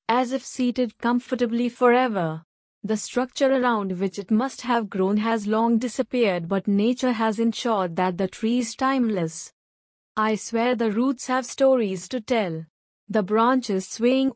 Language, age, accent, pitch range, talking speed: English, 30-49, Indian, 200-250 Hz, 150 wpm